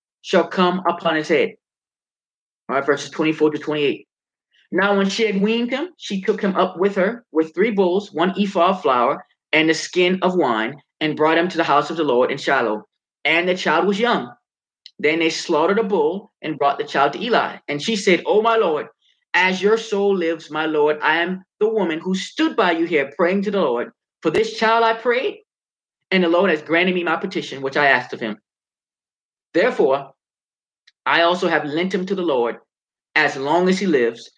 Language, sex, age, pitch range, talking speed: English, male, 20-39, 160-200 Hz, 210 wpm